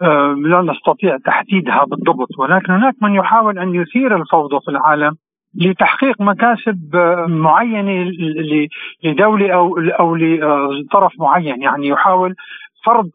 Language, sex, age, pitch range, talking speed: Arabic, male, 50-69, 155-185 Hz, 110 wpm